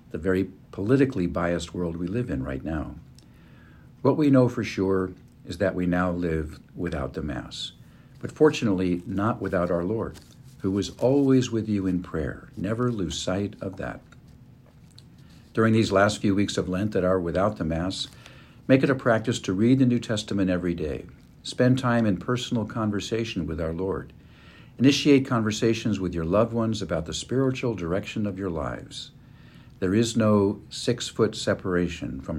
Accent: American